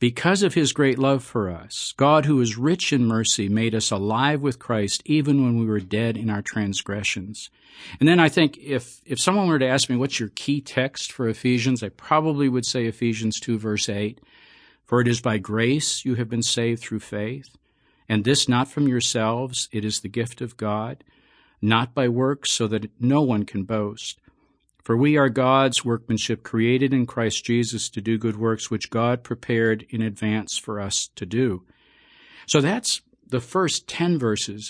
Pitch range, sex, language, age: 110-140 Hz, male, English, 50-69